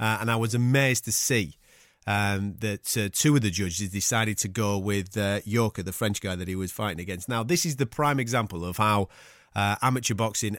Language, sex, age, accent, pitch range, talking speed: English, male, 30-49, British, 100-130 Hz, 220 wpm